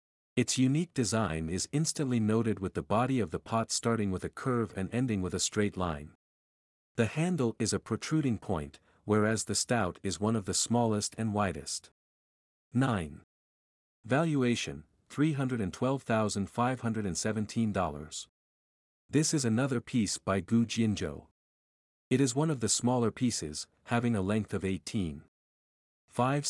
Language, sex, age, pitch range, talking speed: English, male, 50-69, 90-125 Hz, 140 wpm